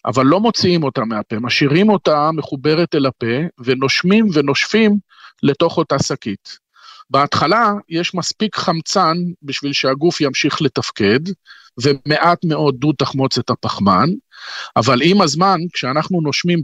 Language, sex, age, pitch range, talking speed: Hebrew, male, 40-59, 130-170 Hz, 120 wpm